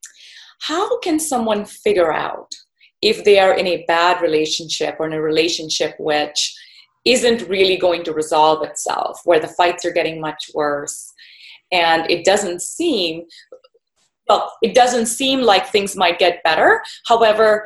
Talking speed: 150 wpm